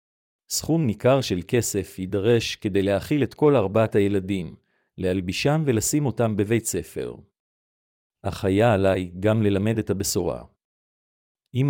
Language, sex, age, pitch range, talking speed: Hebrew, male, 50-69, 100-120 Hz, 125 wpm